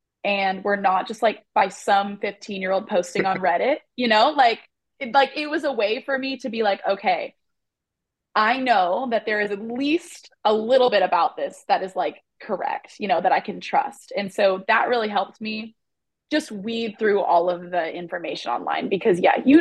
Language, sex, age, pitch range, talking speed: English, female, 20-39, 190-250 Hz, 195 wpm